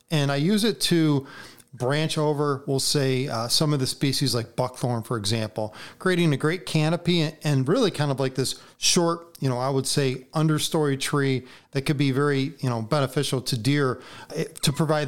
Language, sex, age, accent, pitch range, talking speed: English, male, 40-59, American, 125-150 Hz, 185 wpm